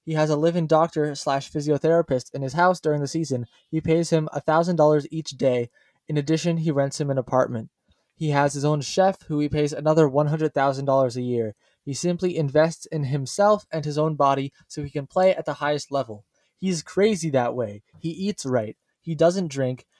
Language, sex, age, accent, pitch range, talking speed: English, male, 20-39, American, 135-165 Hz, 195 wpm